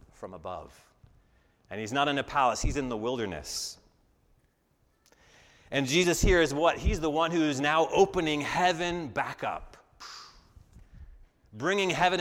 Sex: male